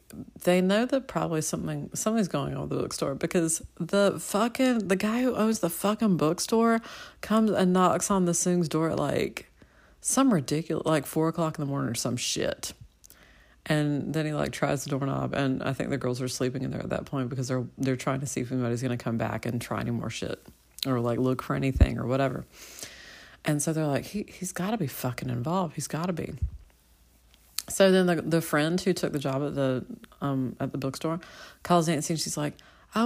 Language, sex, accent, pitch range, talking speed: English, female, American, 135-190 Hz, 220 wpm